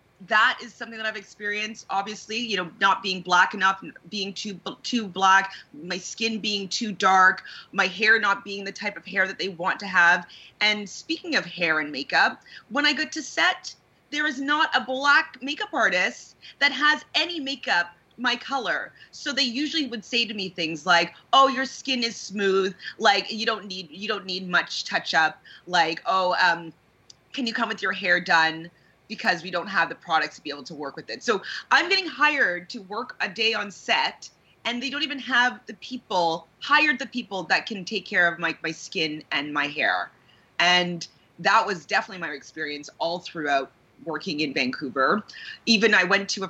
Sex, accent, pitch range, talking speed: female, American, 175-240 Hz, 195 wpm